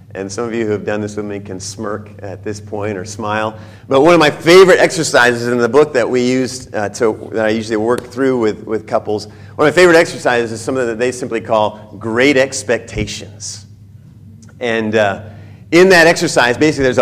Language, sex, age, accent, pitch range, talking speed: English, male, 40-59, American, 105-145 Hz, 205 wpm